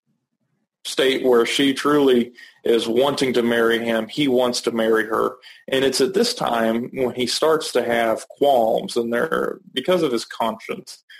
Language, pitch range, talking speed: English, 115-135 Hz, 160 wpm